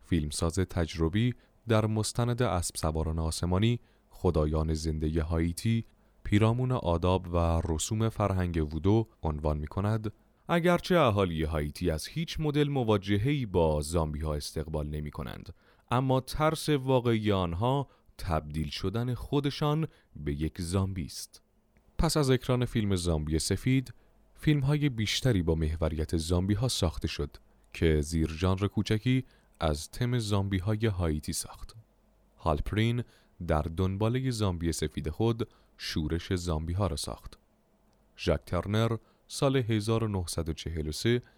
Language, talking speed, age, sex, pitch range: Persian, 120 wpm, 30-49, male, 80-120 Hz